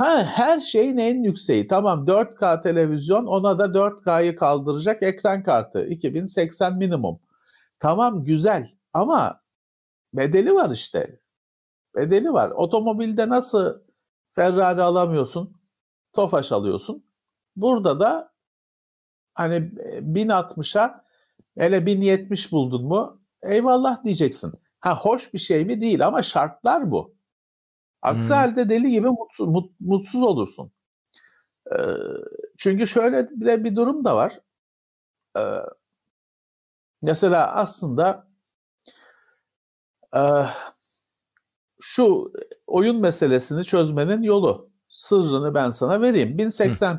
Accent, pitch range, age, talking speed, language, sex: native, 175-235 Hz, 50-69, 95 wpm, Turkish, male